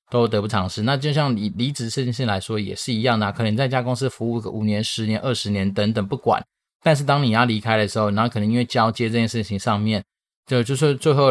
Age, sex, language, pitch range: 20-39, male, Chinese, 105-125 Hz